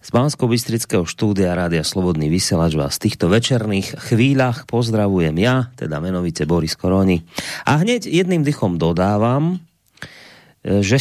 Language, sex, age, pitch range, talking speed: Slovak, male, 30-49, 95-130 Hz, 120 wpm